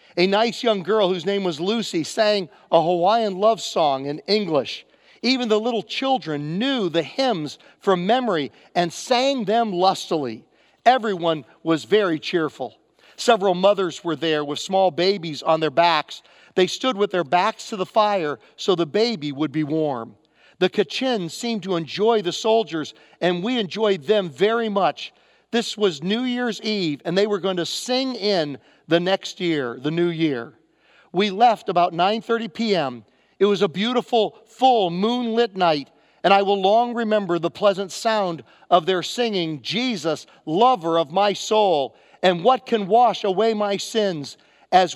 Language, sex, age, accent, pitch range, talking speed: English, male, 50-69, American, 170-225 Hz, 165 wpm